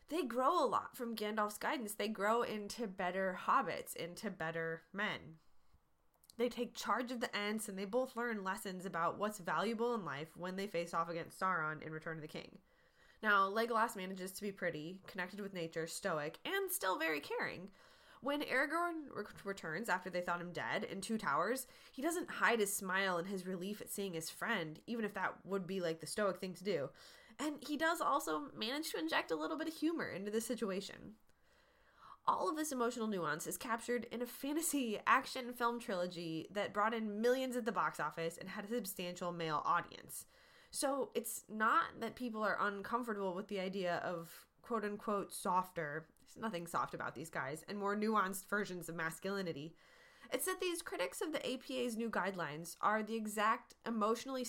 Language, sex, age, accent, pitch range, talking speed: English, female, 20-39, American, 180-240 Hz, 185 wpm